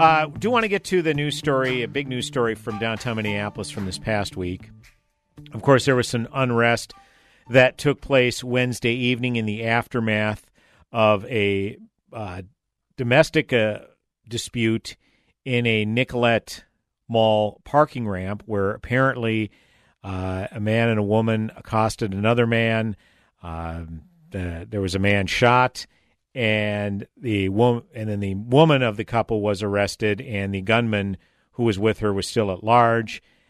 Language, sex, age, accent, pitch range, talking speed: English, male, 50-69, American, 105-125 Hz, 155 wpm